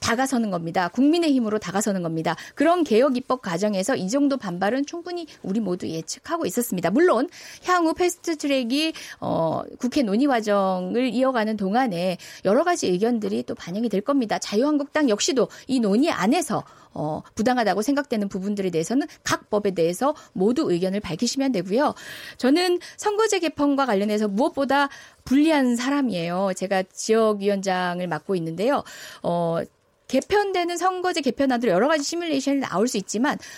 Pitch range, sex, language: 205-300 Hz, female, Korean